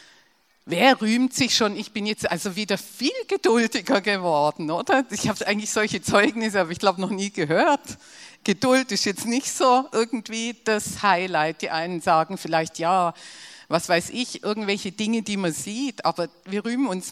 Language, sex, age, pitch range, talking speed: German, female, 50-69, 165-215 Hz, 170 wpm